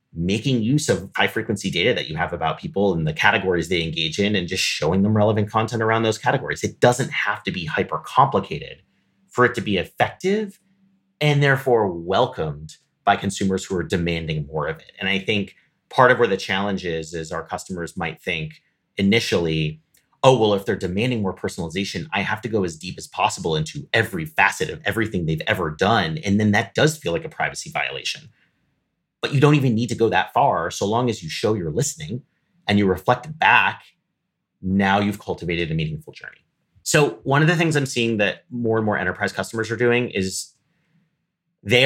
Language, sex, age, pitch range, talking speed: English, male, 30-49, 90-125 Hz, 195 wpm